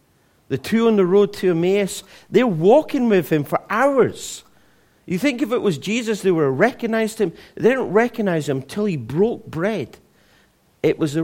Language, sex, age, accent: English, male, 50-69, British